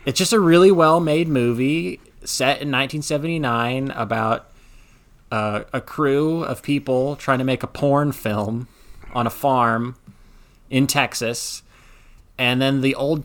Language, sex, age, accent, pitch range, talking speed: English, male, 30-49, American, 115-145 Hz, 135 wpm